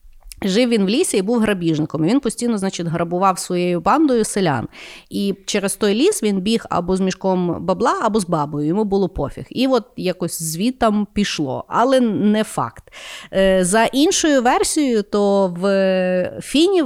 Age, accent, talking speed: 30-49, native, 165 wpm